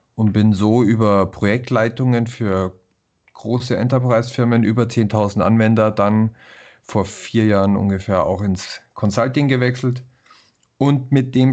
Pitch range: 100-120 Hz